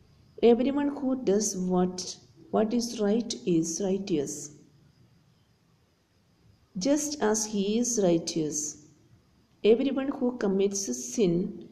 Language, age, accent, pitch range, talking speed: English, 50-69, Indian, 180-230 Hz, 90 wpm